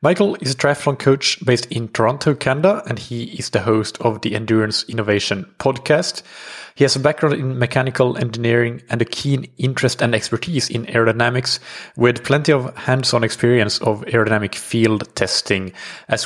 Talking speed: 165 wpm